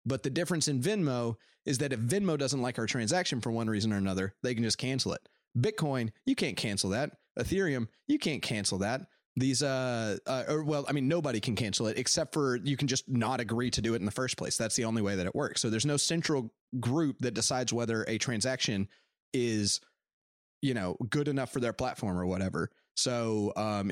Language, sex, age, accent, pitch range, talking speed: English, male, 30-49, American, 110-140 Hz, 215 wpm